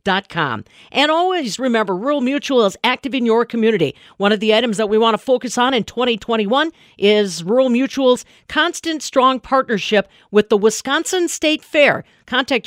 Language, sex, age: English, female, 50-69